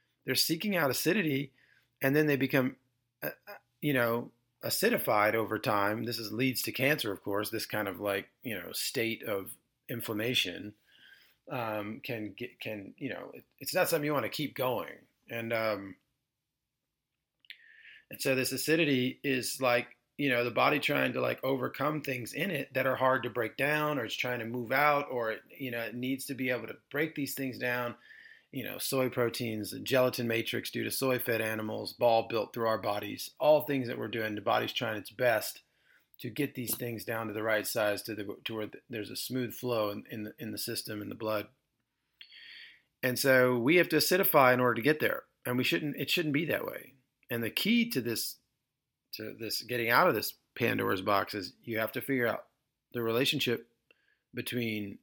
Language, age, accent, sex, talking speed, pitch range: English, 30-49, American, male, 190 wpm, 115-135 Hz